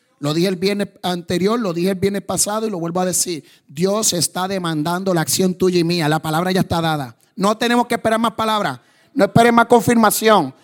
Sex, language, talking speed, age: male, English, 215 wpm, 30-49